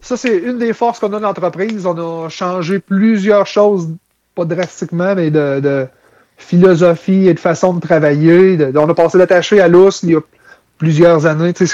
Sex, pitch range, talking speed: male, 150-200 Hz, 195 wpm